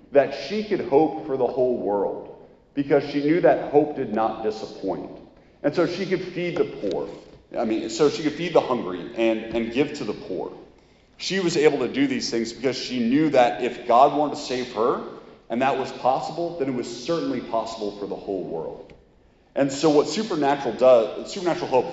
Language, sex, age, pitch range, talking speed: English, male, 40-59, 105-145 Hz, 200 wpm